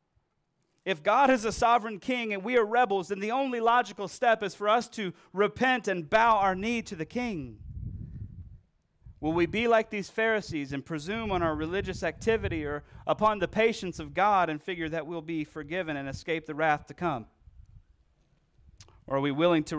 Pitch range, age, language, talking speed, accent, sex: 130-180 Hz, 40-59, English, 190 wpm, American, male